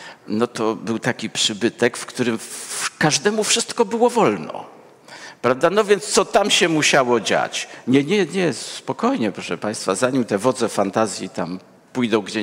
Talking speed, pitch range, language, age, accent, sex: 155 wpm, 110-185 Hz, Polish, 50-69, native, male